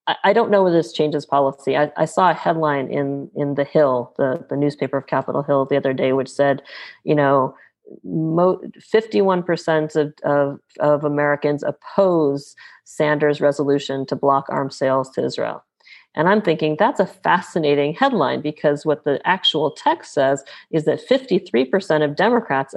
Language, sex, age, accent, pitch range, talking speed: English, female, 40-59, American, 145-175 Hz, 165 wpm